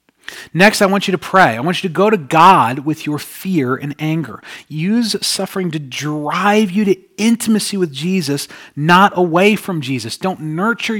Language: English